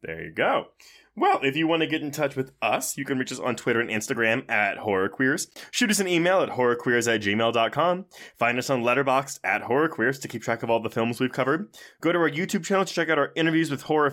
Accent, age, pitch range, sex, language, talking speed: American, 20-39, 125-185 Hz, male, English, 245 wpm